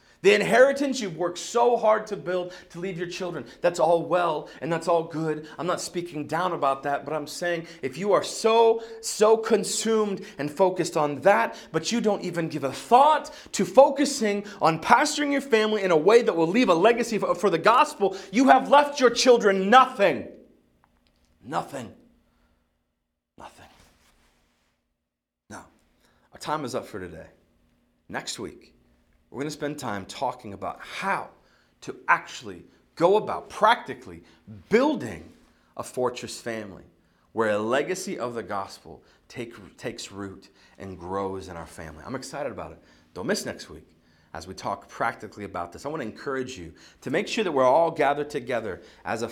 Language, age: English, 40-59